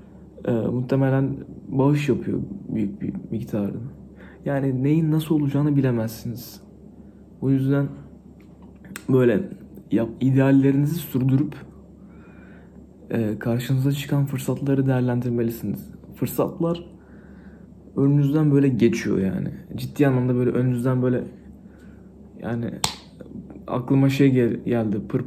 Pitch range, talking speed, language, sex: 120-140 Hz, 90 wpm, Turkish, male